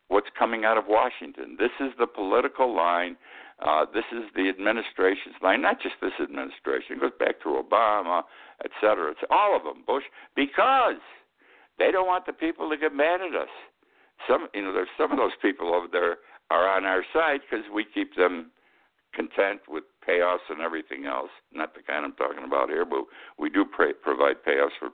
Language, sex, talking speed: English, male, 185 wpm